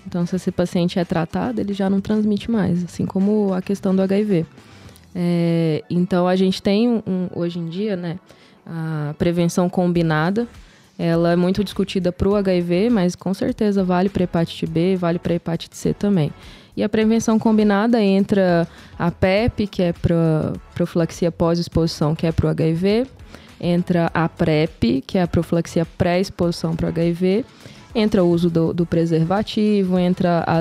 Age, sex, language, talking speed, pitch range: 20-39, female, Portuguese, 170 wpm, 170-200 Hz